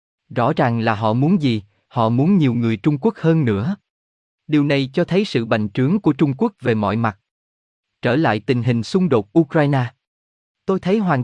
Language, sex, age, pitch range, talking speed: Vietnamese, male, 20-39, 115-155 Hz, 200 wpm